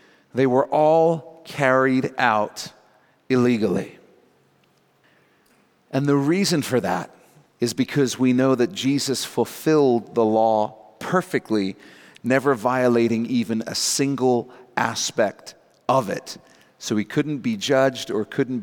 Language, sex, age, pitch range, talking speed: English, male, 40-59, 130-185 Hz, 115 wpm